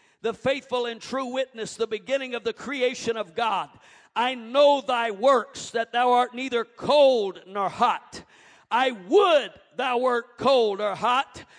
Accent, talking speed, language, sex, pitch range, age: American, 155 wpm, English, male, 230-280 Hz, 50-69